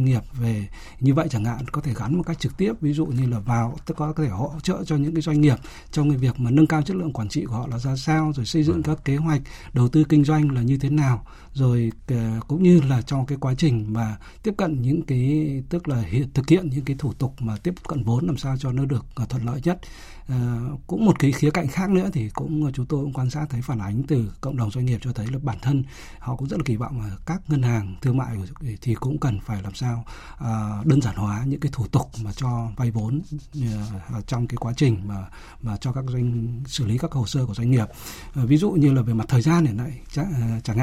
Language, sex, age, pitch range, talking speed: Vietnamese, male, 60-79, 120-150 Hz, 255 wpm